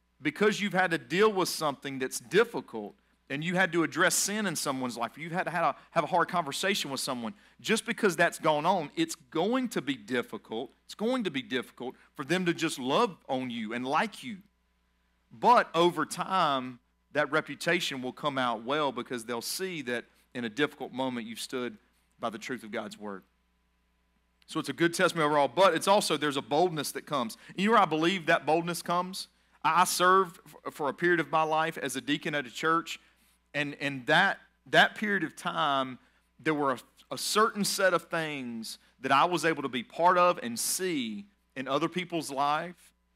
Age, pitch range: 40-59, 130-180 Hz